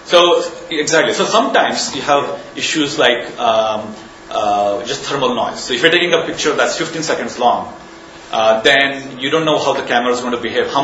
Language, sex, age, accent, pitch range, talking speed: English, male, 30-49, Indian, 115-165 Hz, 200 wpm